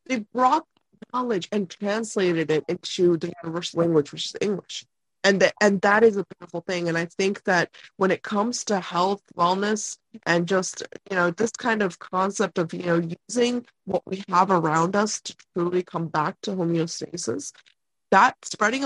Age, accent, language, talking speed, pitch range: 20-39, American, English, 180 wpm, 175-215 Hz